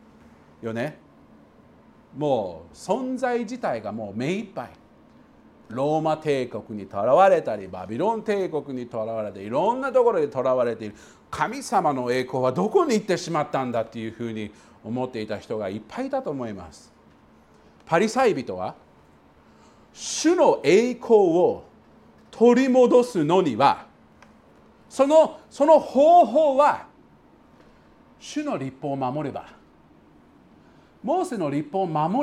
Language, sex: Japanese, male